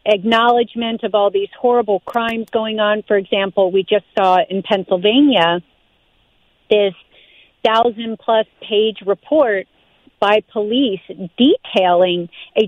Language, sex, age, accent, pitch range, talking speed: English, female, 50-69, American, 195-240 Hz, 105 wpm